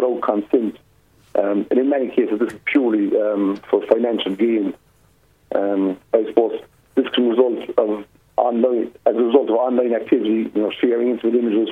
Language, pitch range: English, 110-135 Hz